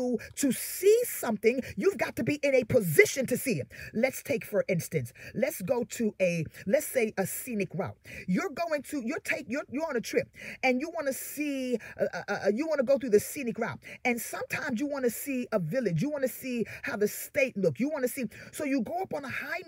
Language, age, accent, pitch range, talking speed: English, 30-49, American, 215-300 Hz, 230 wpm